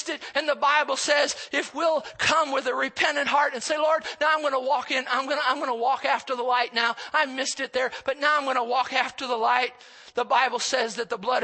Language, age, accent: English, 40-59, American